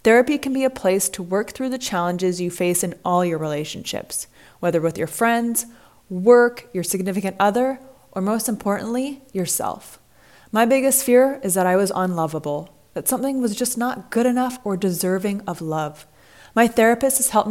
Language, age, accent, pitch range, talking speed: English, 20-39, American, 180-245 Hz, 175 wpm